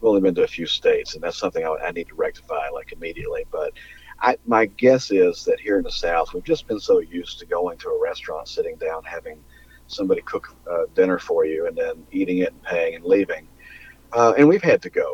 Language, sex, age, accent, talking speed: English, male, 50-69, American, 235 wpm